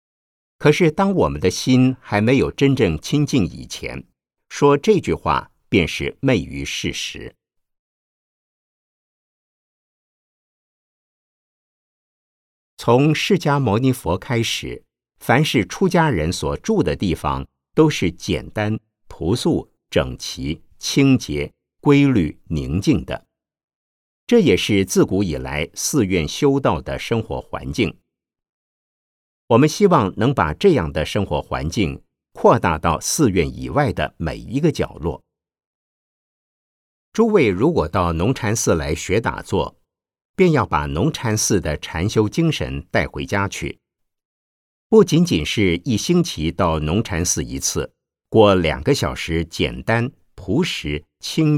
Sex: male